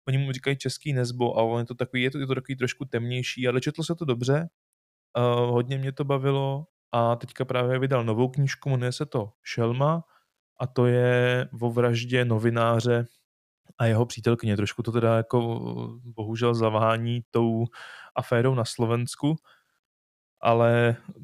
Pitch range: 115-130 Hz